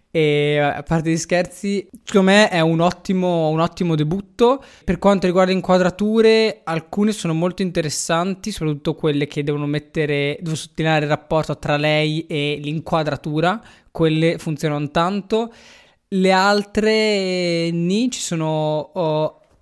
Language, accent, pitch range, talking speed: Italian, native, 145-180 Hz, 135 wpm